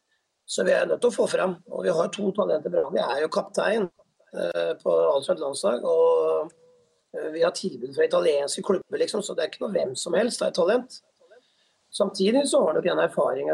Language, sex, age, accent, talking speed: English, male, 30-49, Swedish, 205 wpm